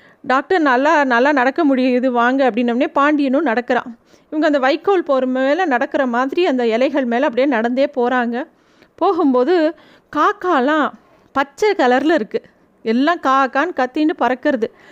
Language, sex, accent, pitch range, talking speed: Tamil, female, native, 255-330 Hz, 125 wpm